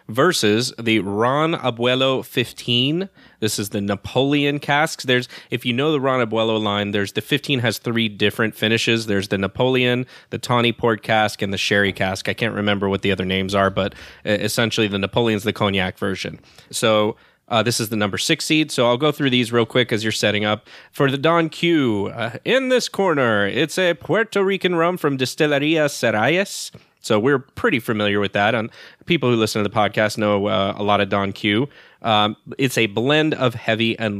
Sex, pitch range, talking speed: male, 105-135 Hz, 200 wpm